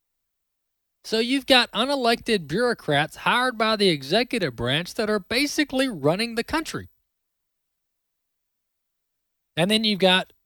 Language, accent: English, American